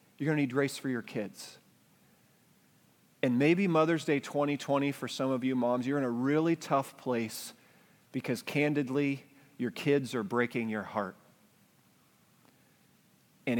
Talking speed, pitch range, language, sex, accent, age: 145 wpm, 130-155 Hz, English, male, American, 40-59